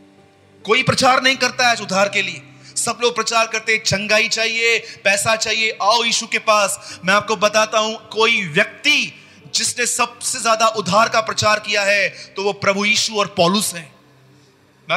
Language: Hindi